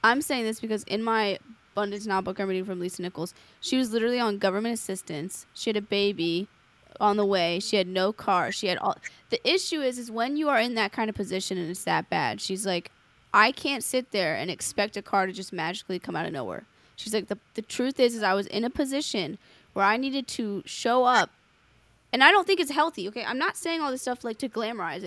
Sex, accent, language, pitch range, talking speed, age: female, American, English, 190-230 Hz, 240 wpm, 10-29